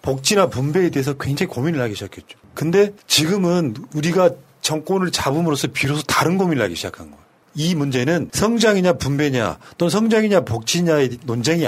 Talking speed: 135 wpm